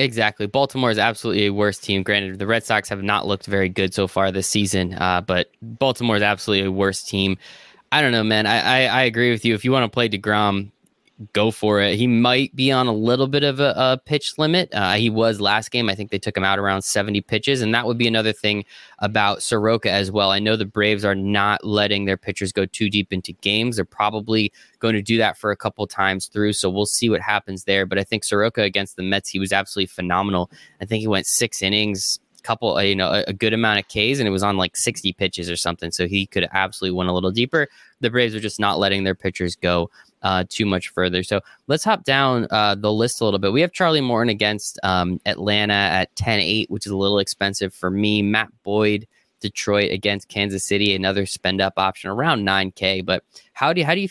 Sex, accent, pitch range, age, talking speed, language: male, American, 95-115 Hz, 20-39, 240 wpm, English